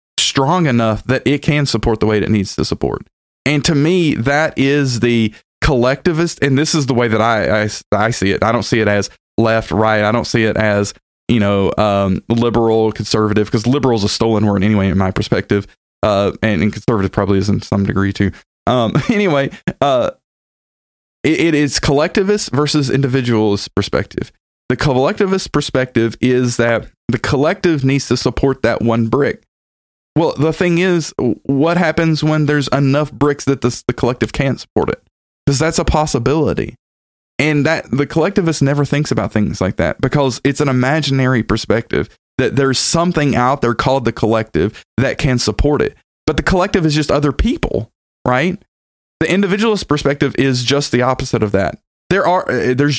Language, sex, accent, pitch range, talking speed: English, male, American, 110-145 Hz, 180 wpm